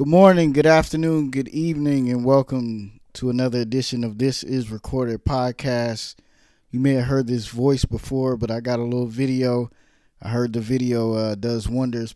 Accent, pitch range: American, 110-135 Hz